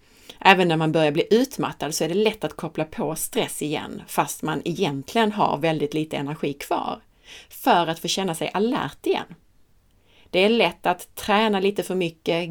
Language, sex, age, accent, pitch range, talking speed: Swedish, female, 30-49, native, 150-215 Hz, 180 wpm